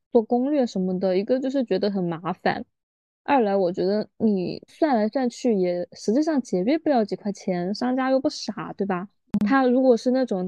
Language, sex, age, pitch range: Chinese, female, 10-29, 185-235 Hz